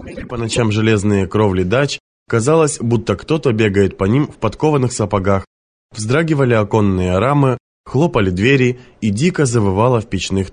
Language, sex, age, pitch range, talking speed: Russian, male, 20-39, 100-125 Hz, 135 wpm